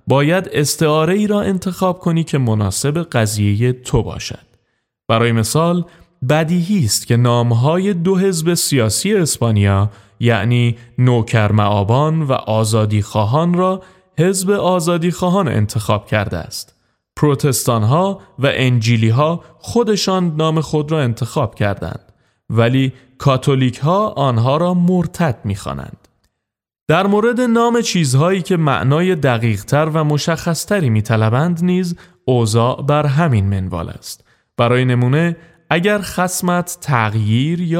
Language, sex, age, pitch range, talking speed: Persian, male, 30-49, 115-170 Hz, 115 wpm